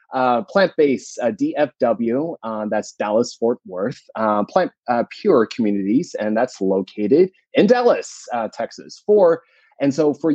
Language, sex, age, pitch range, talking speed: English, male, 30-49, 110-150 Hz, 140 wpm